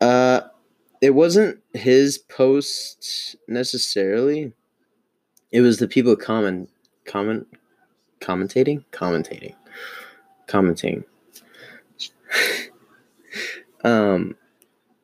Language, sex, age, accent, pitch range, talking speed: English, male, 20-39, American, 100-125 Hz, 65 wpm